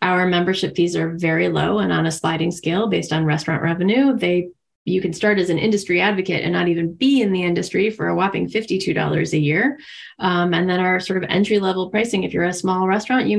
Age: 20-39